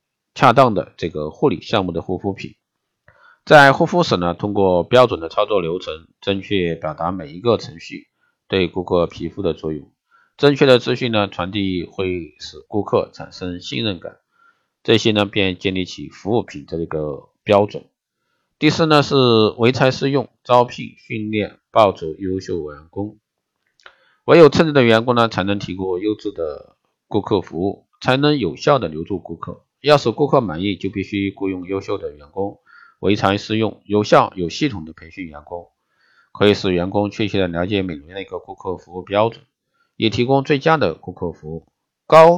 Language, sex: Chinese, male